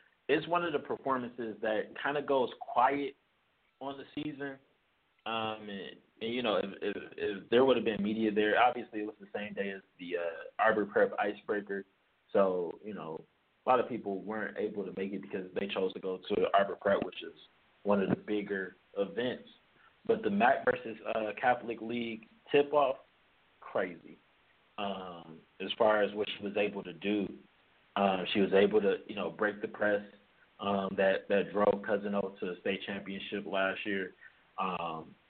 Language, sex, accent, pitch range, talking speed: English, male, American, 95-115 Hz, 185 wpm